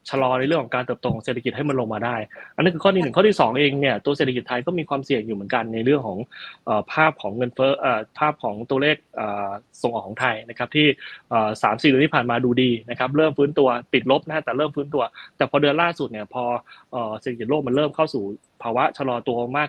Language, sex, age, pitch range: Thai, male, 20-39, 120-155 Hz